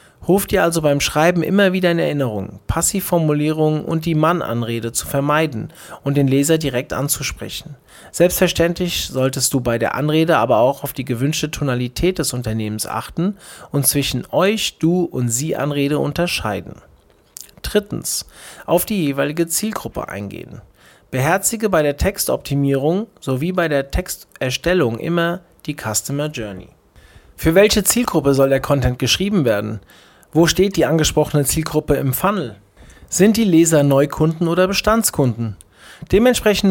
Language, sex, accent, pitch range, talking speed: German, male, German, 130-170 Hz, 135 wpm